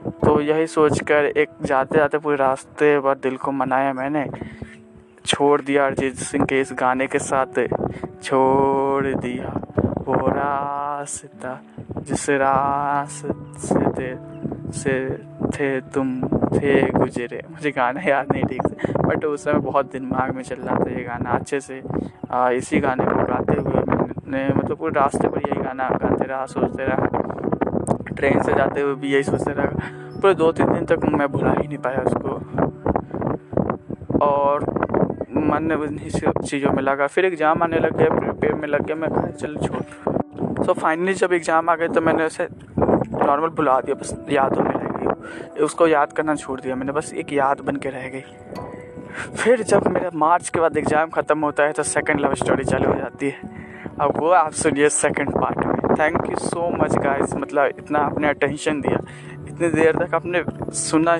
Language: Hindi